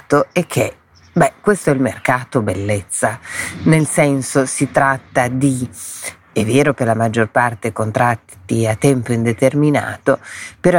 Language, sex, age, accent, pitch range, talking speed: Italian, female, 40-59, native, 120-145 Hz, 135 wpm